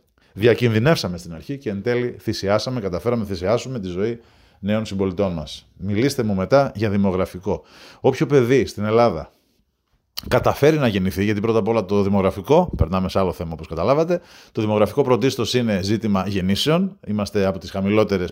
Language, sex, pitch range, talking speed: Greek, male, 95-125 Hz, 160 wpm